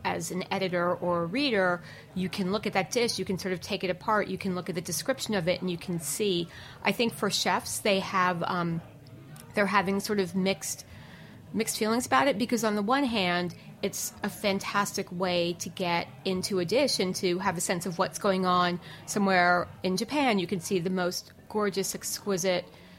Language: English